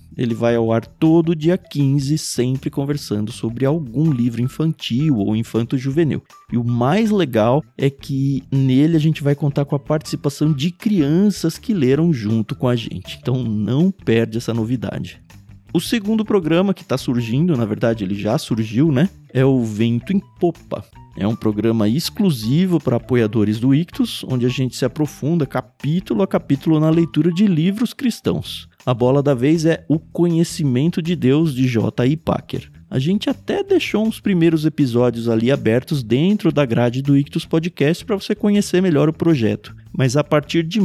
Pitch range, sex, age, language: 125-170 Hz, male, 20-39, Portuguese